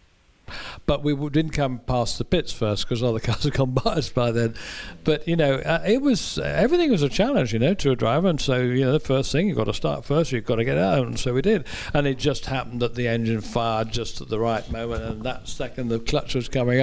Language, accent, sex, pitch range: English, British, male, 110-135 Hz